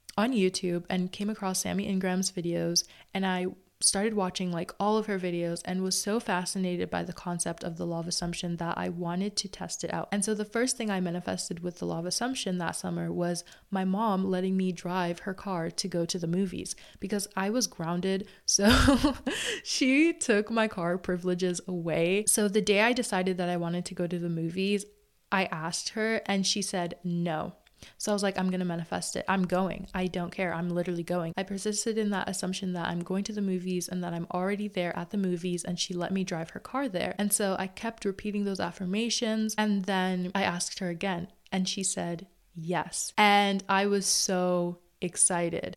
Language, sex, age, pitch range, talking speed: English, female, 20-39, 175-200 Hz, 210 wpm